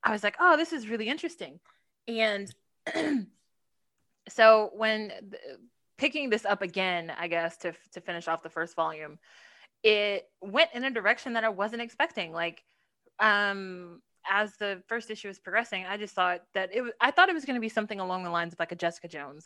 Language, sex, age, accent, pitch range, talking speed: English, female, 20-39, American, 175-225 Hz, 195 wpm